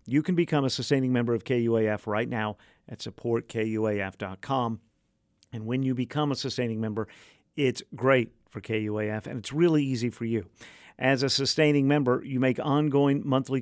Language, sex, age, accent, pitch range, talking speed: English, male, 50-69, American, 110-140 Hz, 165 wpm